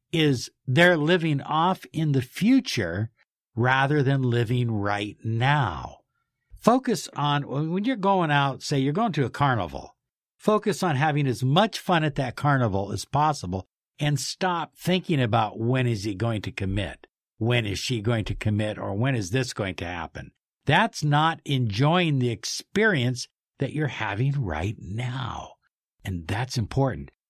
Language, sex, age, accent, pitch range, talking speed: English, male, 60-79, American, 105-145 Hz, 155 wpm